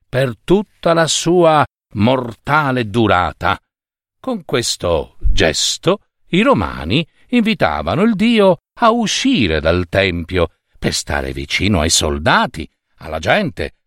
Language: Italian